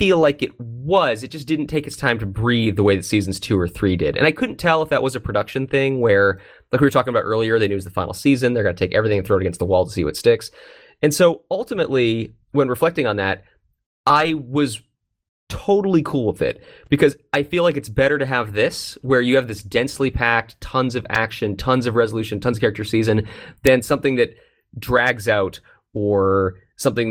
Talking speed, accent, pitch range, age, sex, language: 230 wpm, American, 100-140 Hz, 20-39, male, English